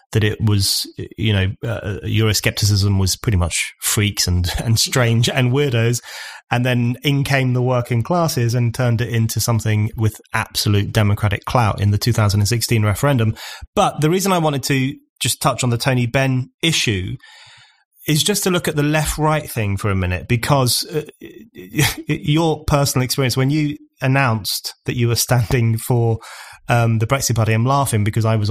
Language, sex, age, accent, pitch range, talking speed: English, male, 30-49, British, 105-130 Hz, 175 wpm